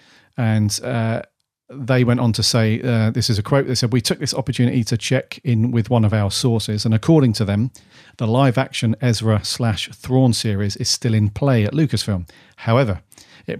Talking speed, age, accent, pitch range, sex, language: 200 wpm, 40-59, British, 105-130 Hz, male, English